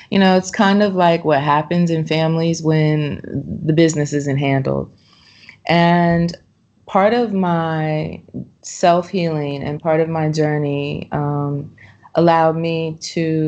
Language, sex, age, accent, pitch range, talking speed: English, female, 30-49, American, 145-160 Hz, 130 wpm